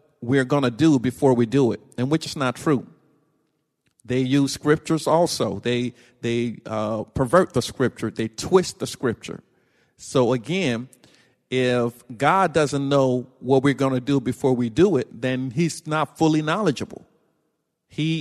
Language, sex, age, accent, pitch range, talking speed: English, male, 50-69, American, 120-150 Hz, 160 wpm